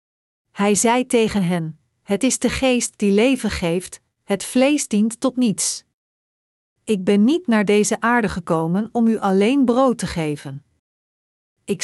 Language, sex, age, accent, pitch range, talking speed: Dutch, female, 50-69, Dutch, 190-245 Hz, 150 wpm